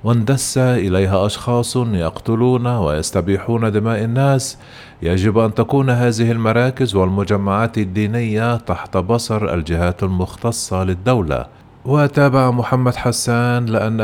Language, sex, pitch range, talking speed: Arabic, male, 95-120 Hz, 100 wpm